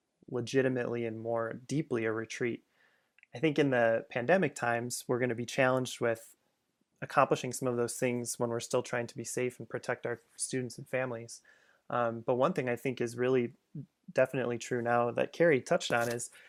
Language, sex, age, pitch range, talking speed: English, male, 20-39, 120-135 Hz, 190 wpm